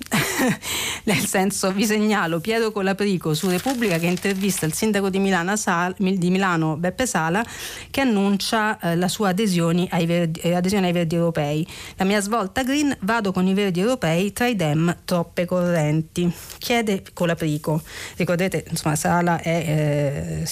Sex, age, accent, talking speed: female, 40-59, native, 135 wpm